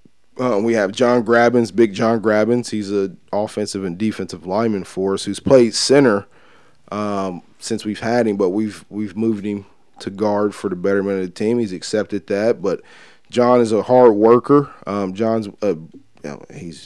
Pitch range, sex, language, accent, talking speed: 95-115 Hz, male, English, American, 185 wpm